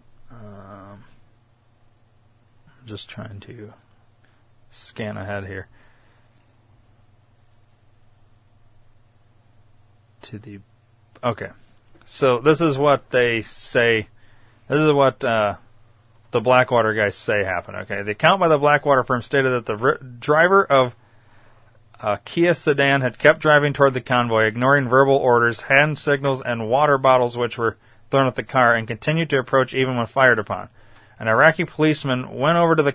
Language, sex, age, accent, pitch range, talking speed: English, male, 30-49, American, 115-135 Hz, 135 wpm